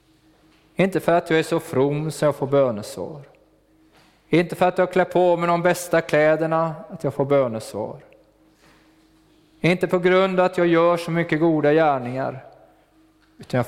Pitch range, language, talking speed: 130-165 Hz, Swedish, 160 wpm